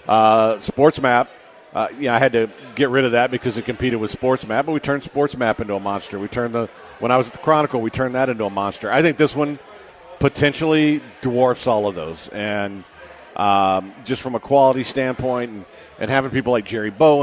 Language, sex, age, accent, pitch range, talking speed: English, male, 50-69, American, 110-135 Hz, 225 wpm